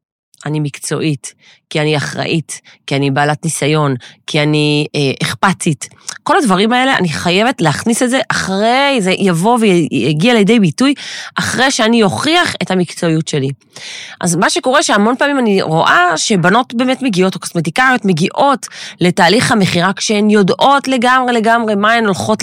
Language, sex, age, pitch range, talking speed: Hebrew, female, 30-49, 170-230 Hz, 145 wpm